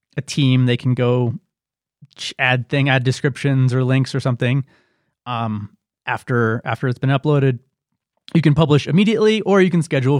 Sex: male